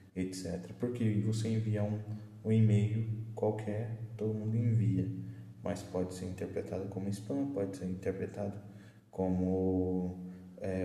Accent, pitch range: Brazilian, 95-110 Hz